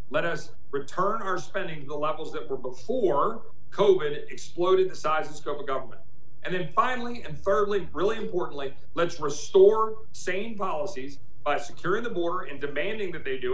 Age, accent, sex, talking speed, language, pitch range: 40-59, American, male, 175 wpm, English, 150-195 Hz